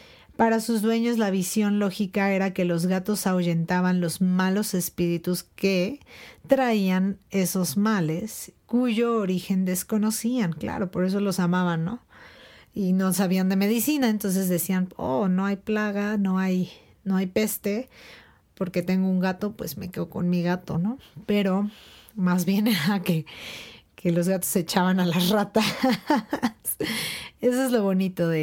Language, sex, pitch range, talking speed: Spanish, female, 180-225 Hz, 150 wpm